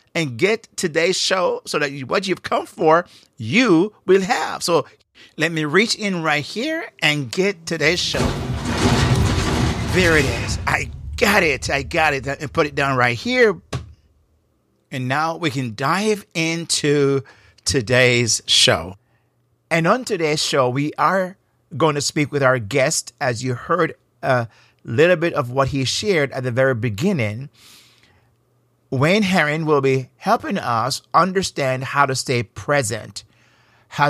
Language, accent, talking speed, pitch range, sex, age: English, American, 150 wpm, 120-160 Hz, male, 50-69